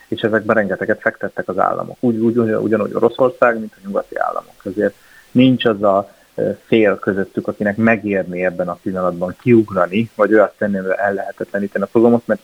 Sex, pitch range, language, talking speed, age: male, 100-115 Hz, Hungarian, 170 wpm, 30-49